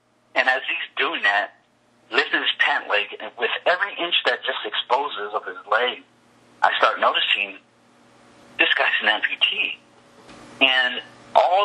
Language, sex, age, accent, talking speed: English, male, 50-69, American, 145 wpm